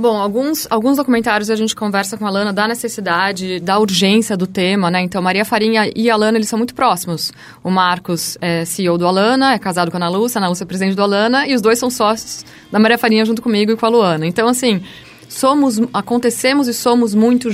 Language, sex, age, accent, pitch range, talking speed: Portuguese, female, 20-39, Brazilian, 180-220 Hz, 230 wpm